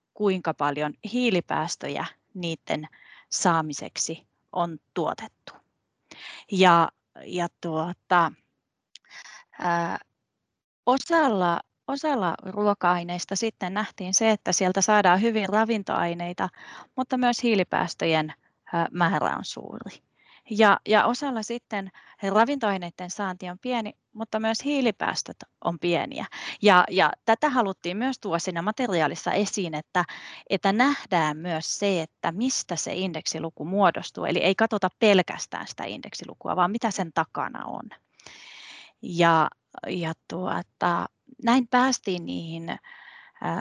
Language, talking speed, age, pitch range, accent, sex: Finnish, 95 wpm, 30-49, 170-225 Hz, native, female